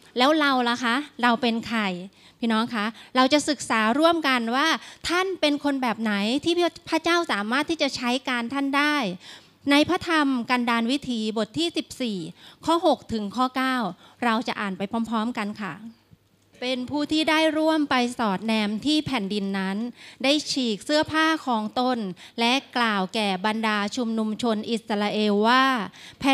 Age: 30-49